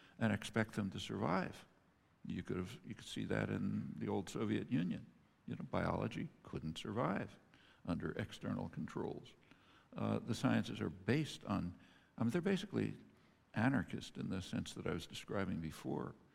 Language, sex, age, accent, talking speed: English, male, 60-79, American, 160 wpm